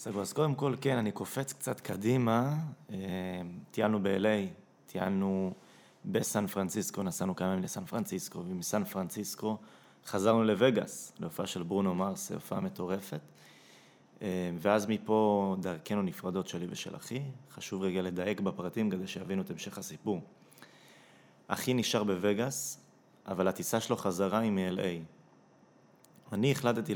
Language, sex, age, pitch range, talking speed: Hebrew, male, 20-39, 95-120 Hz, 125 wpm